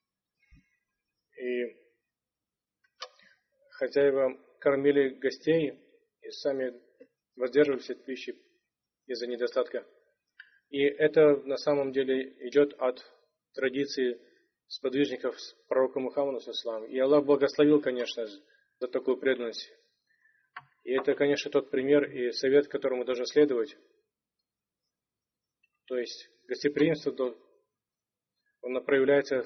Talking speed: 95 wpm